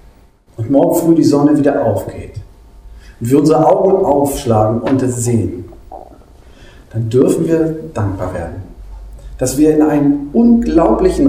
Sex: male